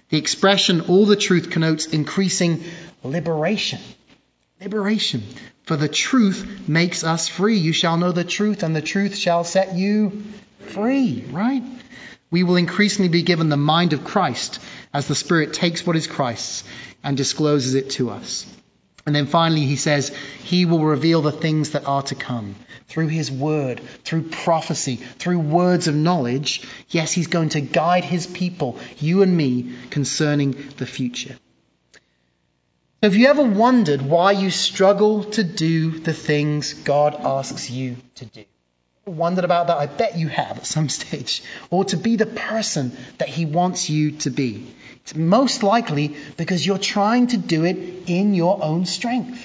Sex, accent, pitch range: male, British, 150-200 Hz